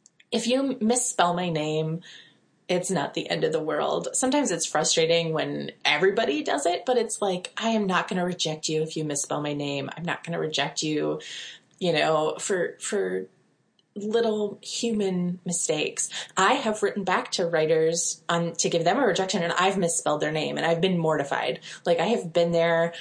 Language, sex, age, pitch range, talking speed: English, female, 20-39, 155-195 Hz, 190 wpm